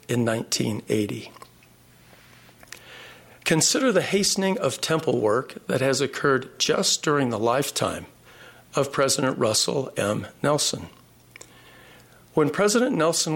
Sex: male